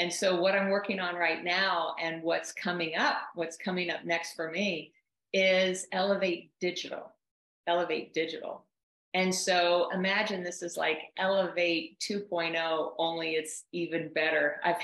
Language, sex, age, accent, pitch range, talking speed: English, female, 50-69, American, 165-190 Hz, 145 wpm